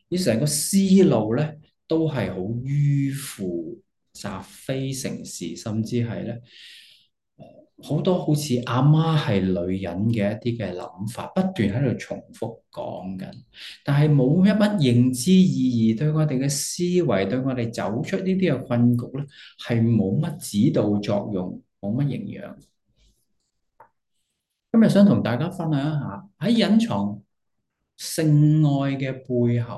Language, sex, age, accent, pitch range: English, male, 20-39, Chinese, 110-155 Hz